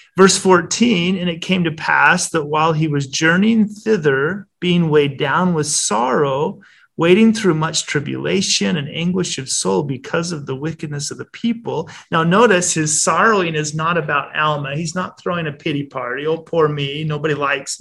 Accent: American